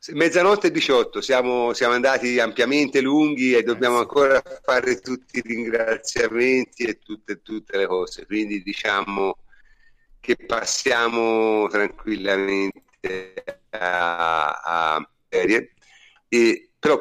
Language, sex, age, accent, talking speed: Italian, male, 50-69, native, 95 wpm